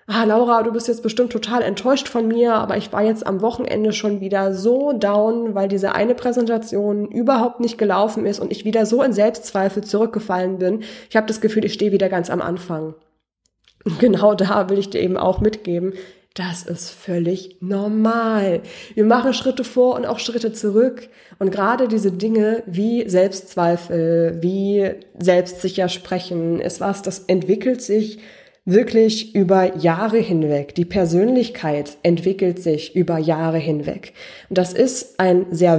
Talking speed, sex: 165 wpm, female